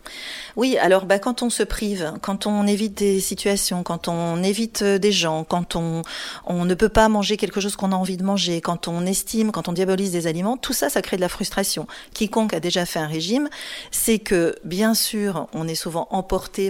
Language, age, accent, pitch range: French, 40-59, French, 170-215 Hz